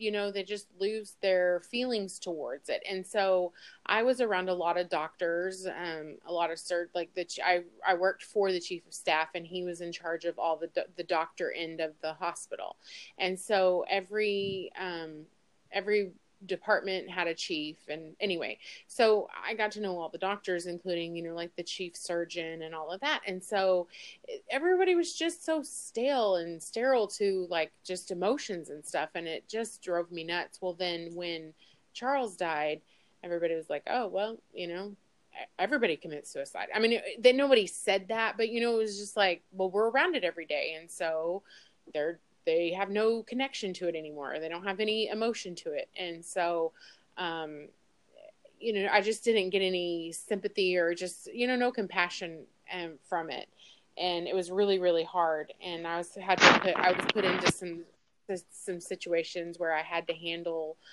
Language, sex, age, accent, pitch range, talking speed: English, female, 30-49, American, 170-205 Hz, 190 wpm